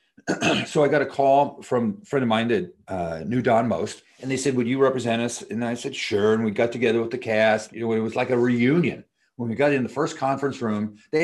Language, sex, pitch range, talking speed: English, male, 110-155 Hz, 260 wpm